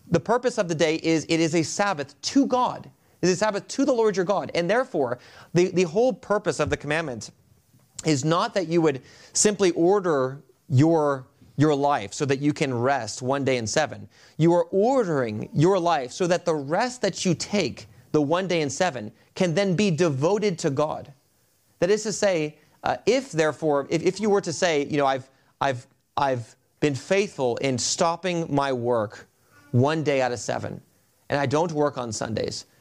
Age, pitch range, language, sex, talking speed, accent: 30-49, 130-170 Hz, English, male, 195 wpm, American